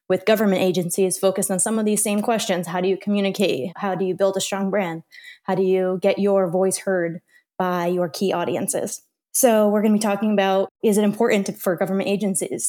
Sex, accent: female, American